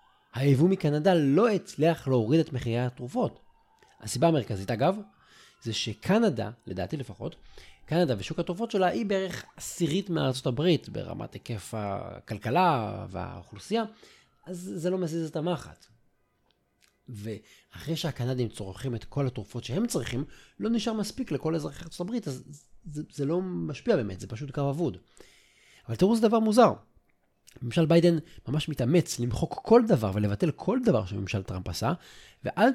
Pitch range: 115-175 Hz